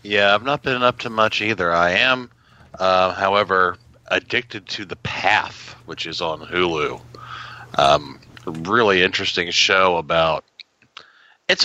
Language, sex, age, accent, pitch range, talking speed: English, male, 40-59, American, 90-125 Hz, 135 wpm